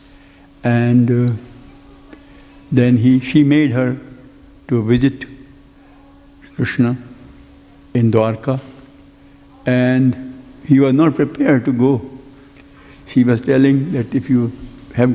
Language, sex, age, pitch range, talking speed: English, male, 60-79, 120-140 Hz, 105 wpm